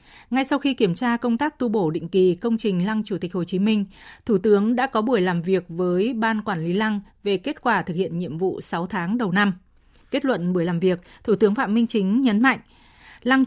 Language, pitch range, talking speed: Vietnamese, 190-235 Hz, 245 wpm